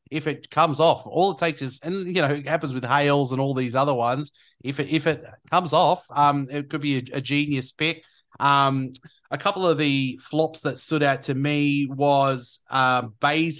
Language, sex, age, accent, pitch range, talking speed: English, male, 30-49, Australian, 130-155 Hz, 205 wpm